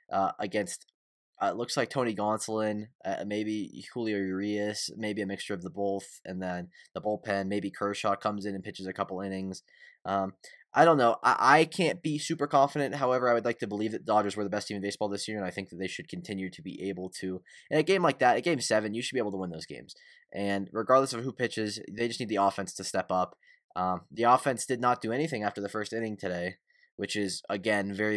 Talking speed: 240 wpm